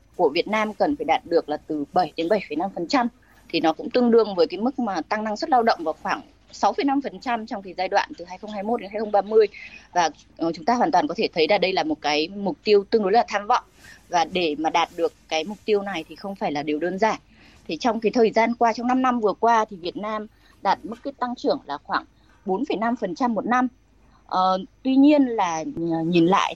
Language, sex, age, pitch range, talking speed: Vietnamese, female, 20-39, 165-240 Hz, 235 wpm